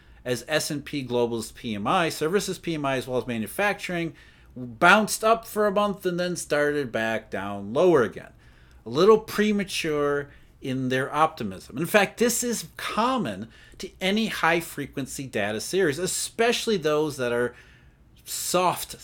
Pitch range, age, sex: 125-190 Hz, 40-59, male